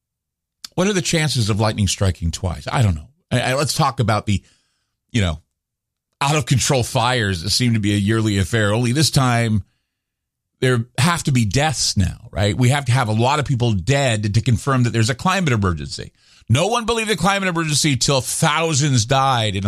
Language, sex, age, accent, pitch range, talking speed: English, male, 50-69, American, 95-135 Hz, 195 wpm